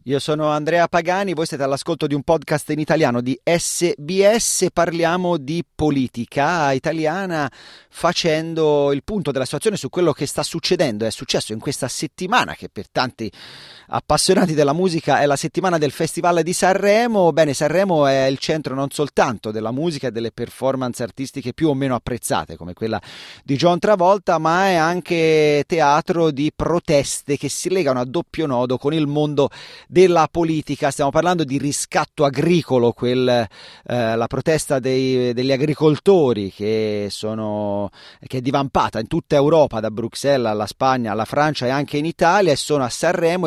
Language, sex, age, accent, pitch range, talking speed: Italian, male, 30-49, native, 130-165 Hz, 165 wpm